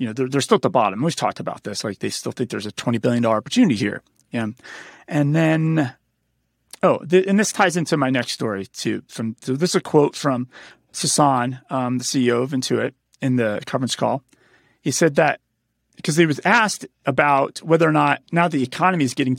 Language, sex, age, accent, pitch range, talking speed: English, male, 30-49, American, 135-185 Hz, 220 wpm